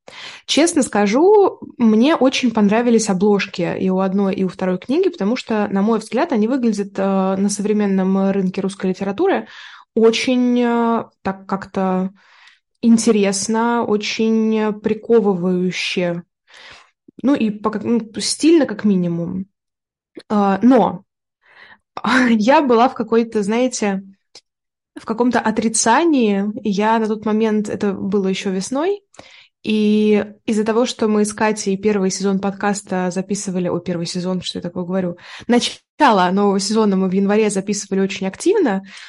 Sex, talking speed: female, 125 wpm